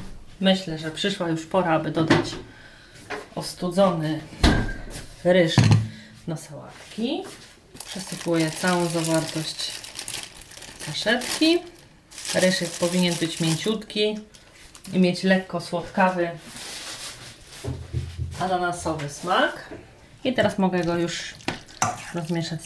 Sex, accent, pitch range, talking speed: female, native, 175-210 Hz, 85 wpm